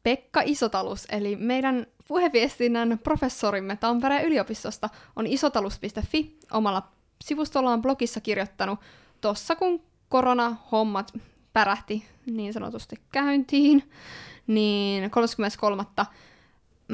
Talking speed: 80 wpm